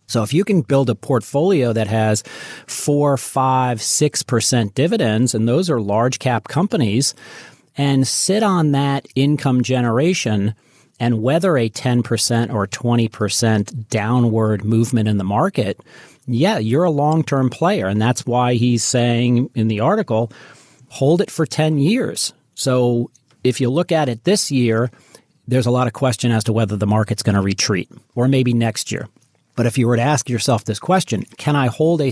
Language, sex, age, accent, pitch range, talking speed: English, male, 40-59, American, 110-140 Hz, 170 wpm